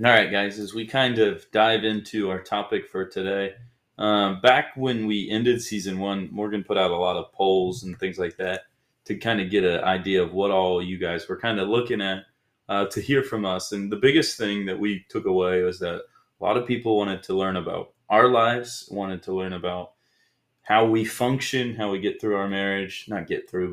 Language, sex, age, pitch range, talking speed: English, male, 20-39, 95-110 Hz, 225 wpm